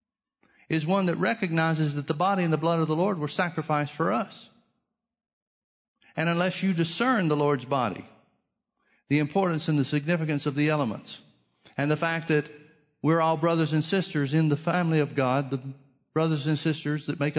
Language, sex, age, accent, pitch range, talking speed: English, male, 50-69, American, 135-170 Hz, 180 wpm